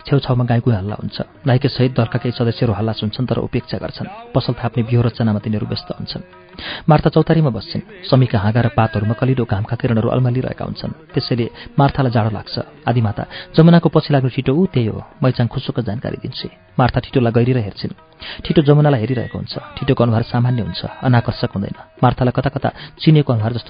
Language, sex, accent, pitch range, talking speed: English, male, Indian, 120-145 Hz, 95 wpm